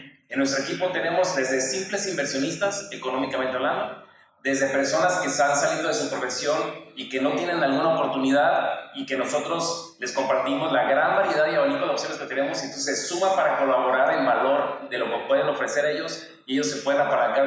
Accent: Mexican